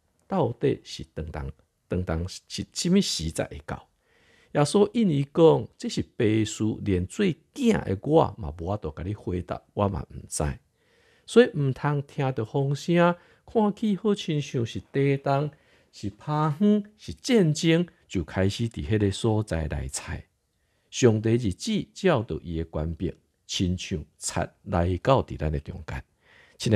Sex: male